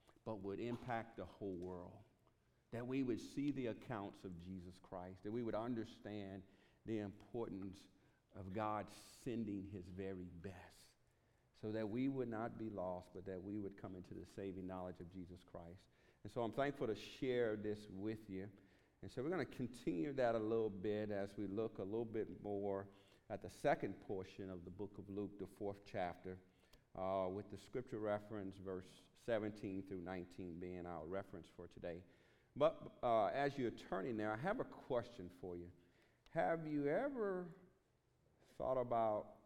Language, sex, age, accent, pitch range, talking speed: English, male, 50-69, American, 95-115 Hz, 175 wpm